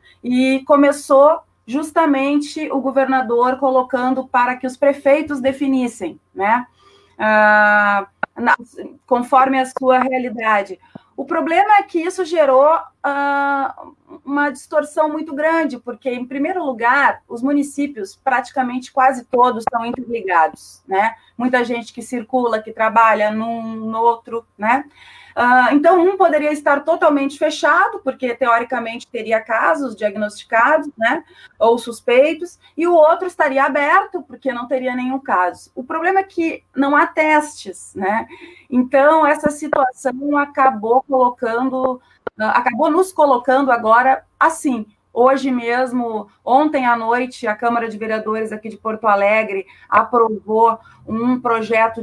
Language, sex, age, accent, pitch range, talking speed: Portuguese, female, 30-49, Brazilian, 225-290 Hz, 125 wpm